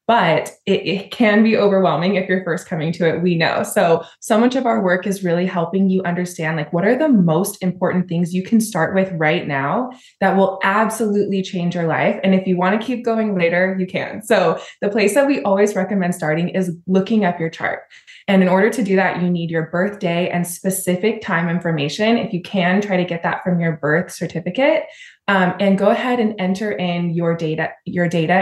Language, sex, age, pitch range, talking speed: English, female, 20-39, 170-205 Hz, 215 wpm